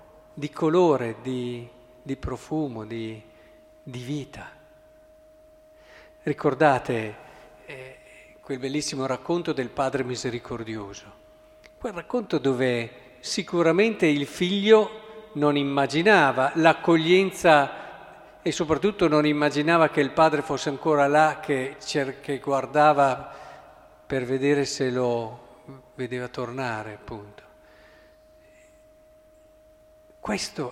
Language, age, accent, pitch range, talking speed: Italian, 50-69, native, 130-205 Hz, 90 wpm